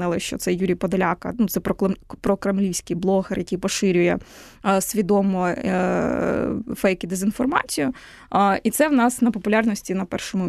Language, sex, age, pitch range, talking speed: Ukrainian, female, 20-39, 190-235 Hz, 145 wpm